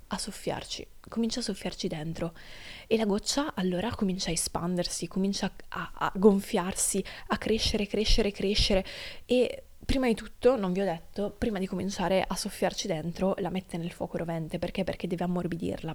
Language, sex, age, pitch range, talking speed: Italian, female, 20-39, 180-225 Hz, 165 wpm